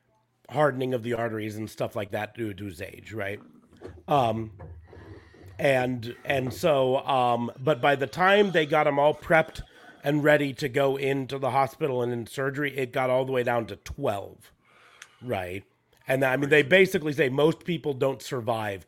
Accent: American